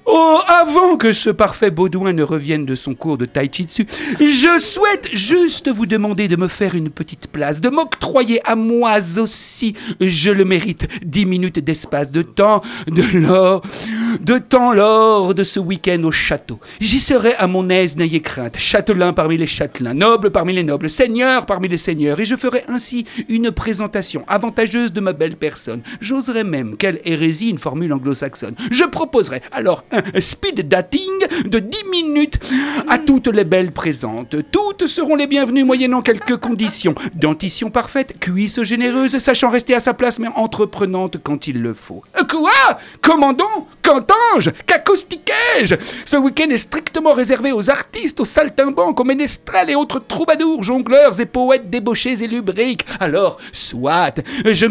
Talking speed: 160 wpm